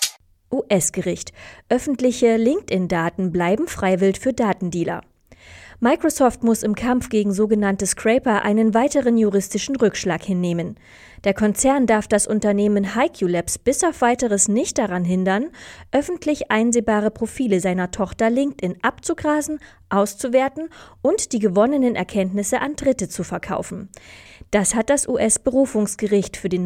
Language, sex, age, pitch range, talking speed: German, female, 20-39, 190-250 Hz, 120 wpm